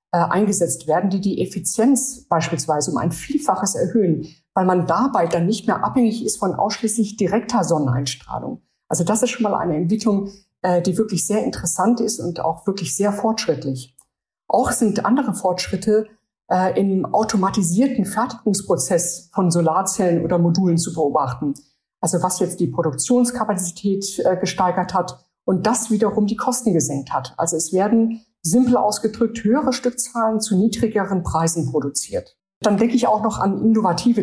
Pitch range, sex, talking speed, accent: 170-220 Hz, female, 145 wpm, German